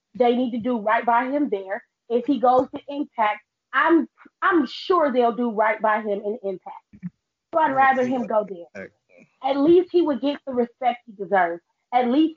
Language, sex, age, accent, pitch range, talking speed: English, female, 30-49, American, 210-270 Hz, 195 wpm